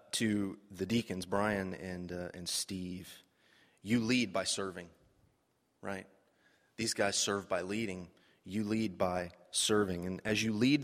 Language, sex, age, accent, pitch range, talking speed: English, male, 30-49, American, 100-115 Hz, 145 wpm